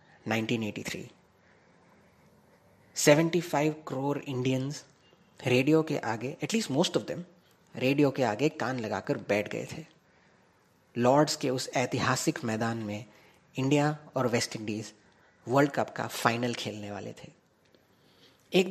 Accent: native